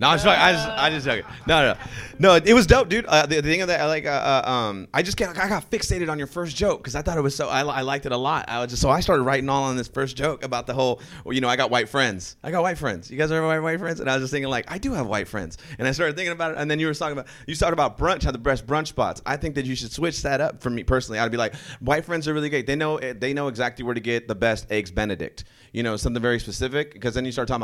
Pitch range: 125-155 Hz